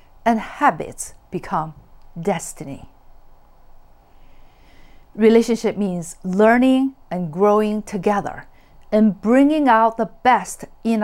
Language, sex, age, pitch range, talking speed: English, female, 50-69, 190-245 Hz, 85 wpm